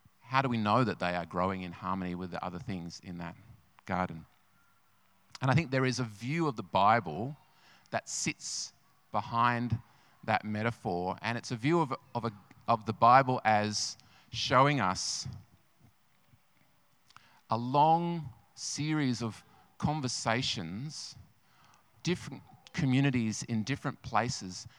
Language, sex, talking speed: English, male, 130 wpm